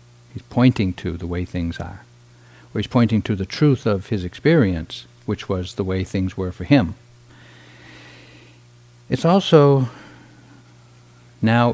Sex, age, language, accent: male, 60-79, English, American